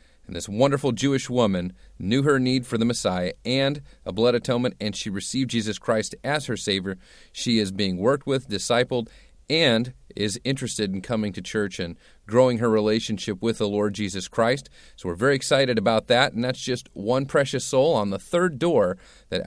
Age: 40-59